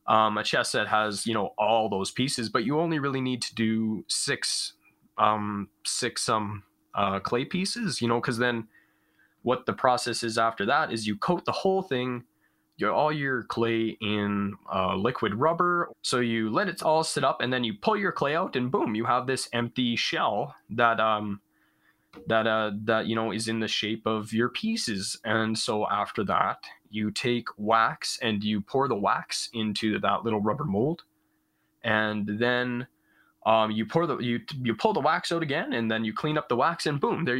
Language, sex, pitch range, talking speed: English, male, 110-130 Hz, 200 wpm